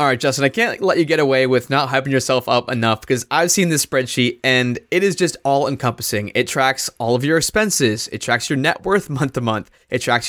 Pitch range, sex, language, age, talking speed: 125-165 Hz, male, English, 20-39, 245 wpm